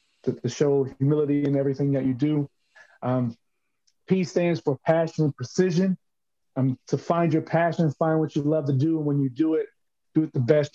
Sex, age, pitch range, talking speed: male, 30-49, 135-155 Hz, 200 wpm